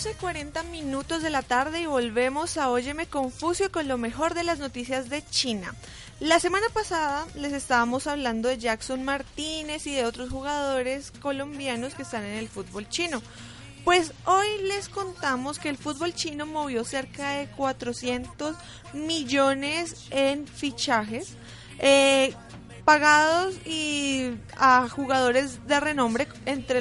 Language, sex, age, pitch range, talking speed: Spanish, female, 20-39, 240-300 Hz, 135 wpm